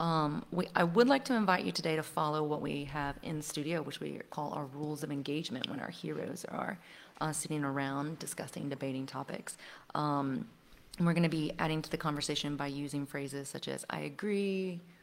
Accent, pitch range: American, 150-185 Hz